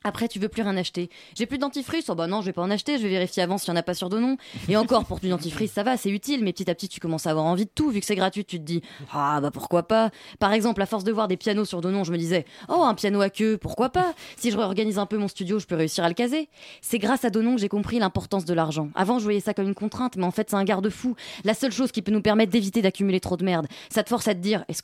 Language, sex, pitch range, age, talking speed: French, female, 190-235 Hz, 20-39, 330 wpm